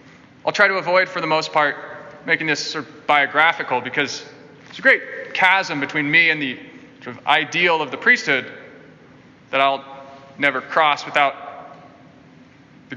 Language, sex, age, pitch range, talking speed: English, male, 20-39, 140-185 Hz, 155 wpm